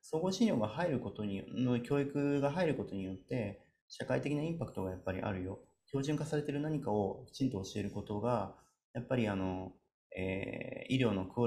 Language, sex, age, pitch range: Japanese, male, 30-49, 100-135 Hz